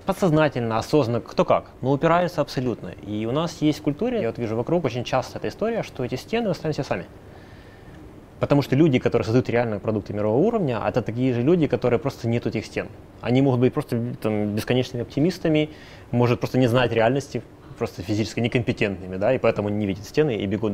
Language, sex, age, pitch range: Russian, male, 20-39, 105-135 Hz